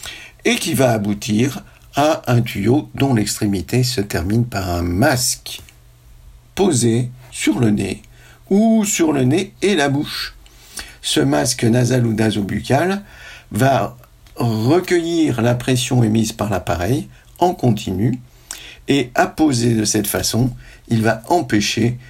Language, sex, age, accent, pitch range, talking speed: French, male, 50-69, French, 105-130 Hz, 130 wpm